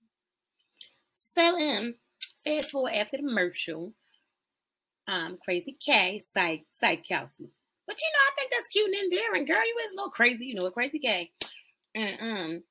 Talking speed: 155 wpm